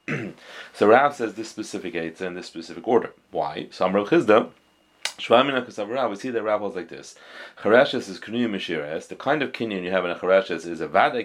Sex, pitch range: male, 85-115 Hz